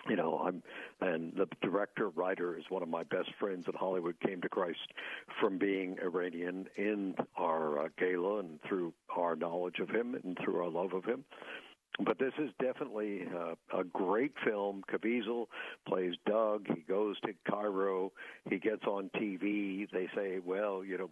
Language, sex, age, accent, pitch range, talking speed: English, male, 60-79, American, 90-105 Hz, 175 wpm